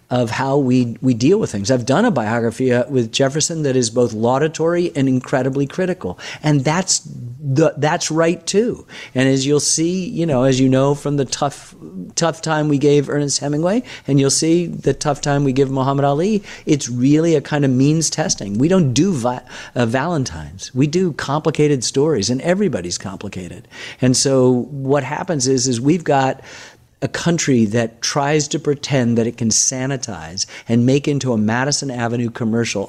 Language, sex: English, male